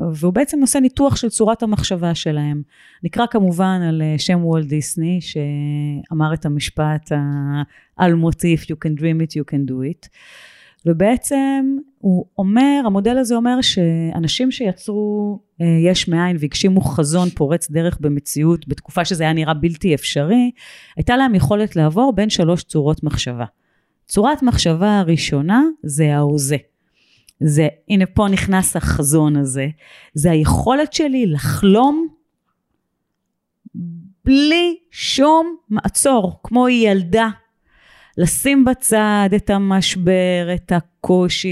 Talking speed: 120 wpm